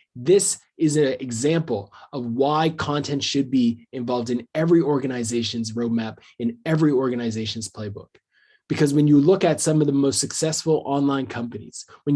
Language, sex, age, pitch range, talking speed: English, male, 20-39, 120-150 Hz, 155 wpm